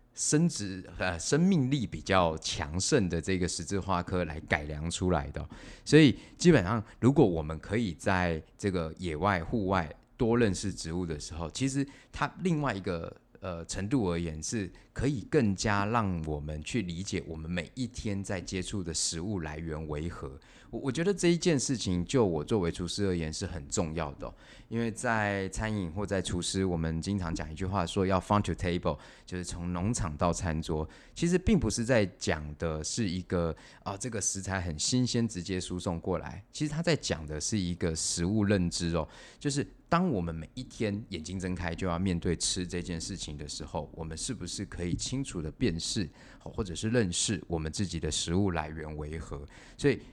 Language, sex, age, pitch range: Chinese, male, 20-39, 85-110 Hz